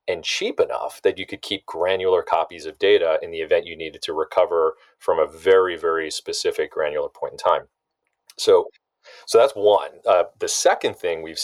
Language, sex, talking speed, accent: English, male, 190 wpm, American